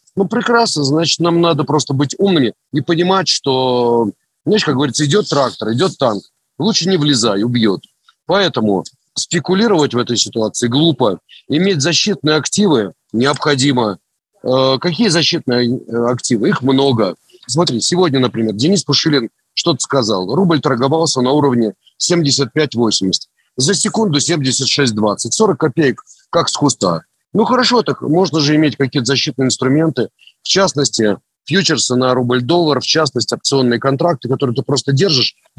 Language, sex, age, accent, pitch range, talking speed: Russian, male, 40-59, native, 130-175 Hz, 135 wpm